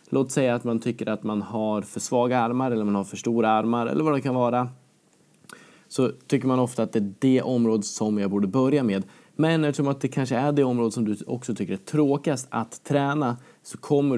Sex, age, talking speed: male, 20-39, 230 wpm